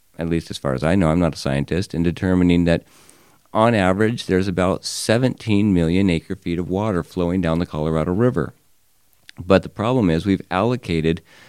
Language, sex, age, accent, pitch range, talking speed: English, male, 50-69, American, 85-100 Hz, 180 wpm